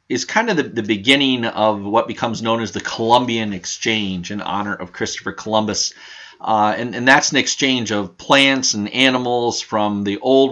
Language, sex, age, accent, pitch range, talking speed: English, male, 40-59, American, 105-120 Hz, 185 wpm